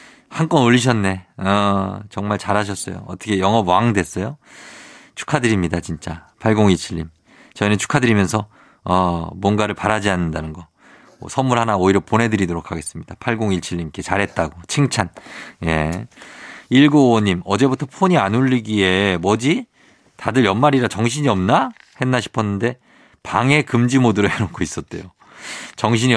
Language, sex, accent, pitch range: Korean, male, native, 95-130 Hz